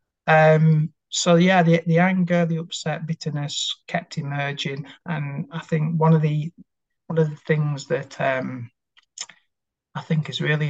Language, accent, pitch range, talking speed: English, British, 135-165 Hz, 150 wpm